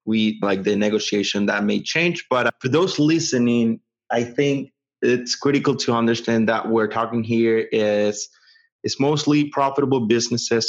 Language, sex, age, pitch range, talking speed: English, male, 20-39, 110-125 Hz, 145 wpm